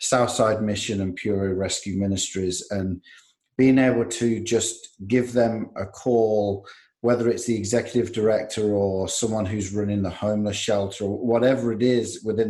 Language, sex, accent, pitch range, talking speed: English, male, British, 105-125 Hz, 155 wpm